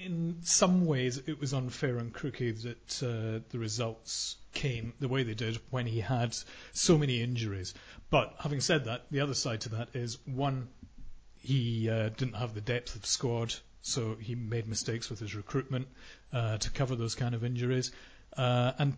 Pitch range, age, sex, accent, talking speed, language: 110-135 Hz, 40-59, male, British, 185 wpm, English